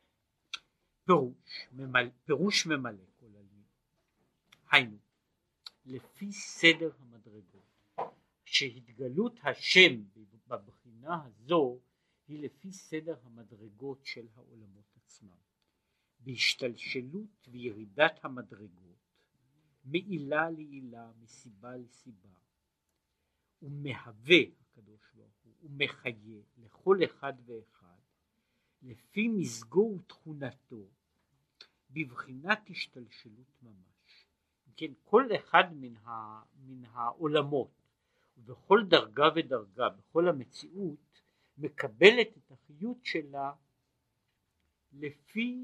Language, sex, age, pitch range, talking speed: Hebrew, male, 60-79, 115-165 Hz, 70 wpm